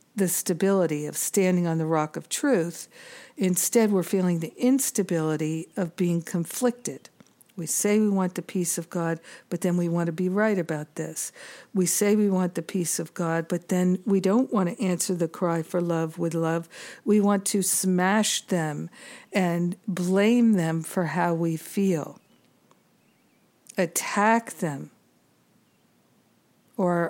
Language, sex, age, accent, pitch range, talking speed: English, female, 60-79, American, 170-205 Hz, 155 wpm